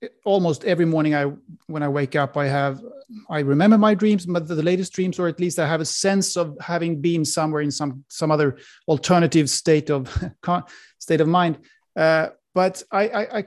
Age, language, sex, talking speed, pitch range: 30-49, English, male, 195 wpm, 160-205 Hz